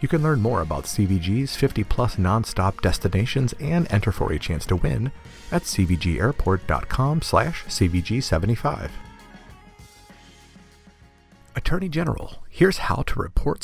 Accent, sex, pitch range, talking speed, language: American, male, 95-145 Hz, 115 wpm, English